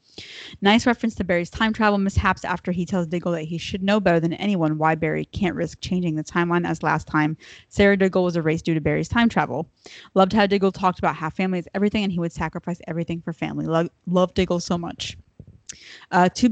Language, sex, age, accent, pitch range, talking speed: English, female, 20-39, American, 165-195 Hz, 215 wpm